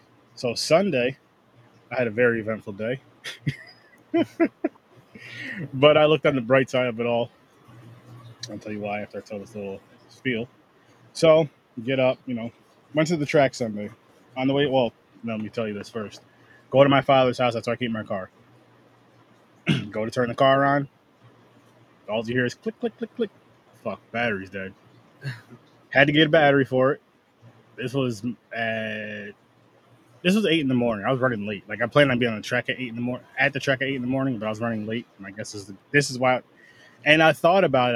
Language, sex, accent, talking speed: English, male, American, 215 wpm